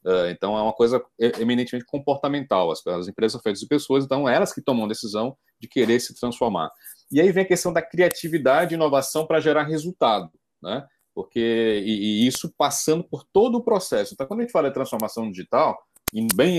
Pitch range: 115-165 Hz